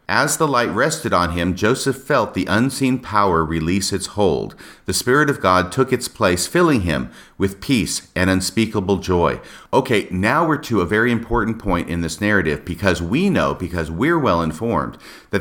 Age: 50-69